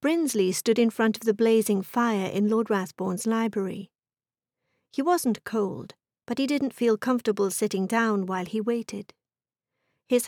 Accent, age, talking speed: British, 50-69, 150 wpm